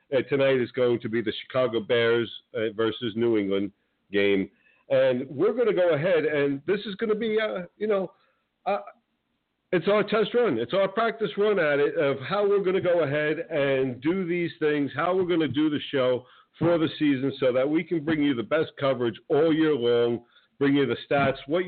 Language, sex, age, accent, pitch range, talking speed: English, male, 50-69, American, 115-170 Hz, 215 wpm